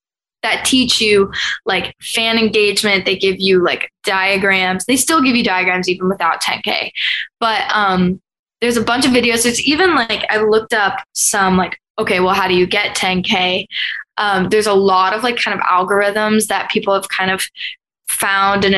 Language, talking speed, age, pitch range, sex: English, 180 wpm, 10-29, 190-235 Hz, female